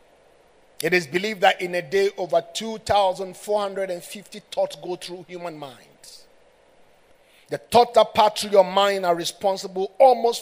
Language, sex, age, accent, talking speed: English, male, 50-69, Nigerian, 140 wpm